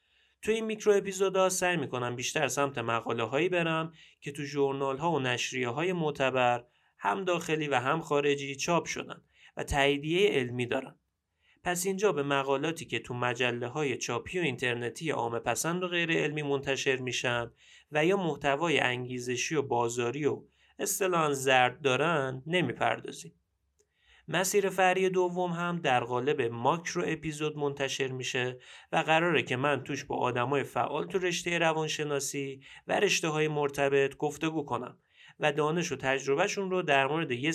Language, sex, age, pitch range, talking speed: Persian, male, 30-49, 125-170 Hz, 150 wpm